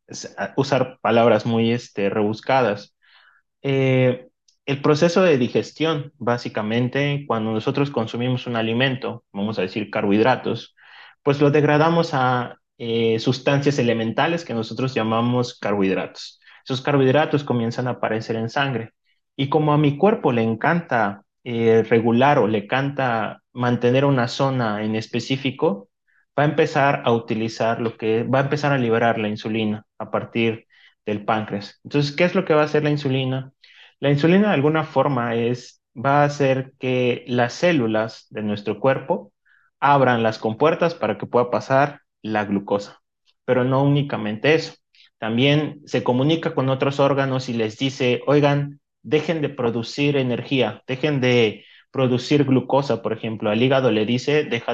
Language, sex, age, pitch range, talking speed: Spanish, male, 30-49, 115-145 Hz, 150 wpm